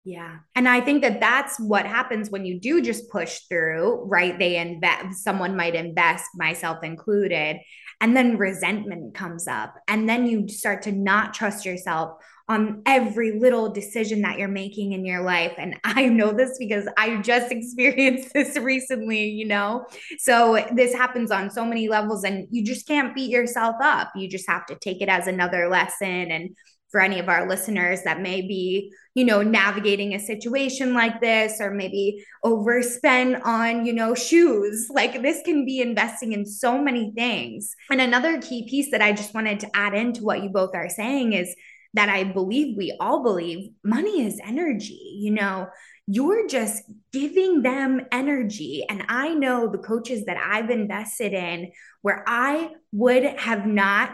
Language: English